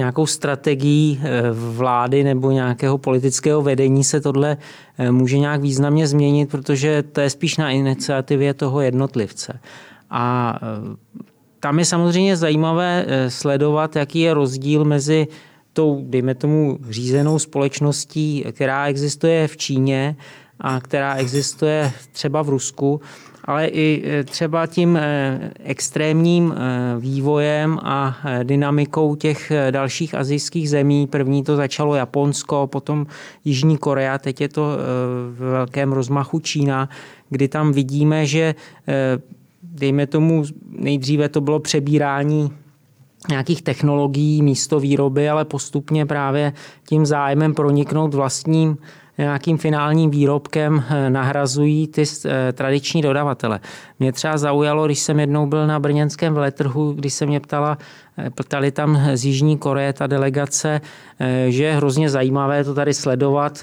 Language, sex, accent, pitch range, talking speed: Czech, male, native, 135-150 Hz, 120 wpm